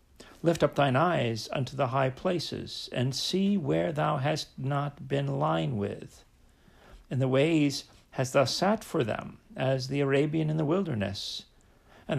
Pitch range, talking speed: 120-160 Hz, 160 wpm